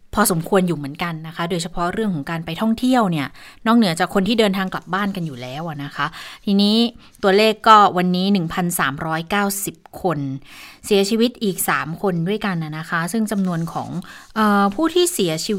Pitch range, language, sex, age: 170-210 Hz, Thai, female, 20-39